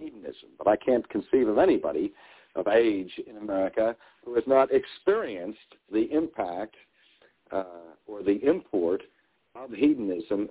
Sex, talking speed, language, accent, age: male, 130 wpm, English, American, 60-79